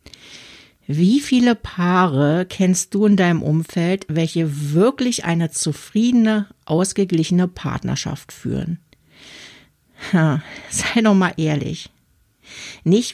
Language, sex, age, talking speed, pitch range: German, female, 60-79, 90 wpm, 155-195 Hz